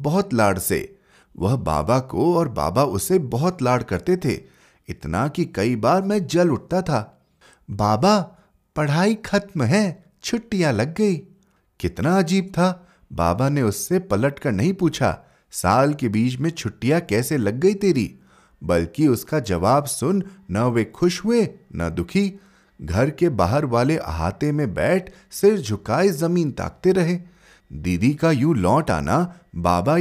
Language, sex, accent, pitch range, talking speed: Hindi, male, native, 125-195 Hz, 150 wpm